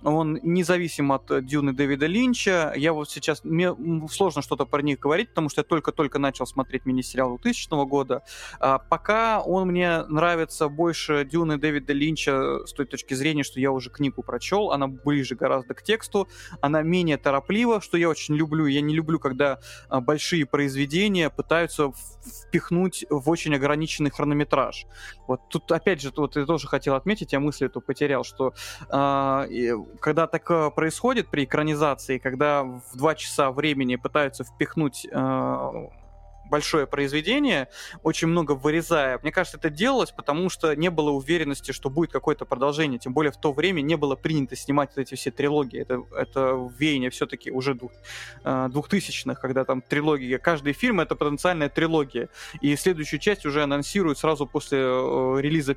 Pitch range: 135-160 Hz